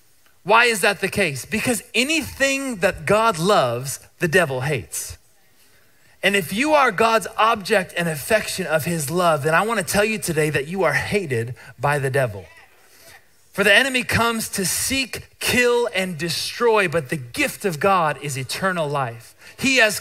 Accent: American